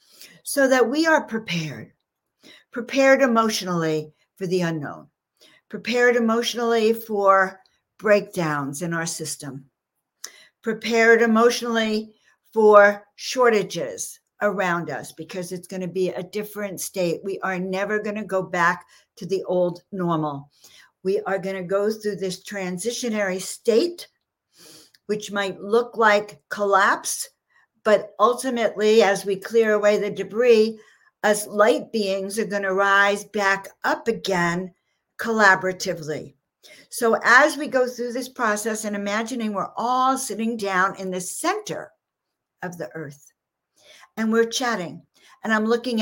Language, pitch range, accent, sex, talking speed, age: English, 180-225 Hz, American, female, 130 wpm, 60-79